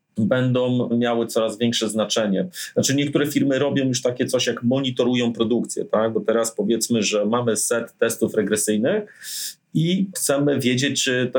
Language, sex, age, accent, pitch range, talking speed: Polish, male, 30-49, native, 110-130 Hz, 155 wpm